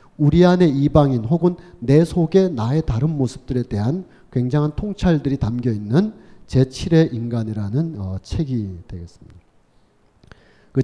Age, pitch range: 40-59, 115-170 Hz